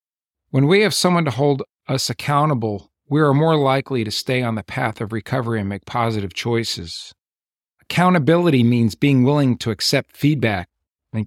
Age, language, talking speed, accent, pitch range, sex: 50-69, English, 165 wpm, American, 110-140 Hz, male